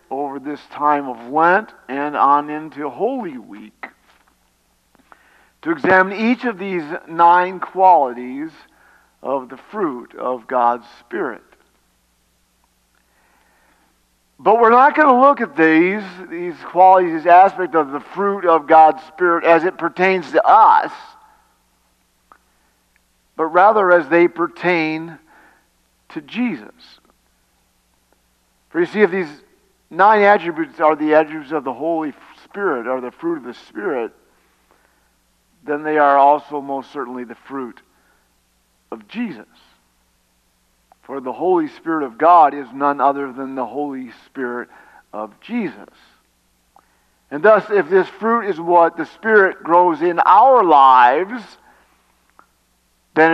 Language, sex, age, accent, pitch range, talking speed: English, male, 50-69, American, 130-190 Hz, 125 wpm